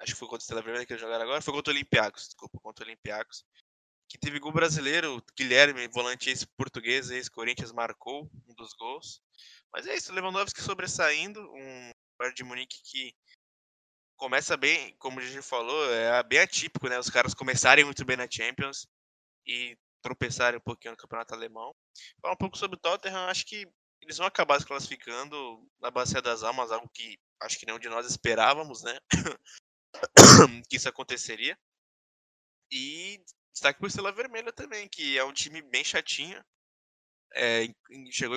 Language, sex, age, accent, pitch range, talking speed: Portuguese, male, 20-39, Brazilian, 120-165 Hz, 170 wpm